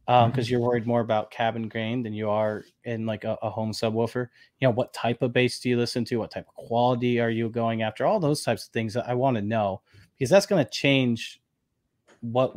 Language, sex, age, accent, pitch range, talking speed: English, male, 30-49, American, 110-125 Hz, 245 wpm